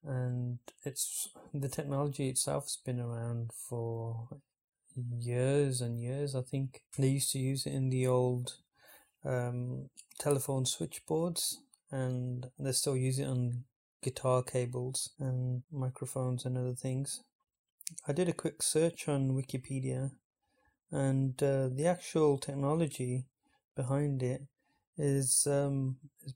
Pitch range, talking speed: 130-145 Hz, 125 wpm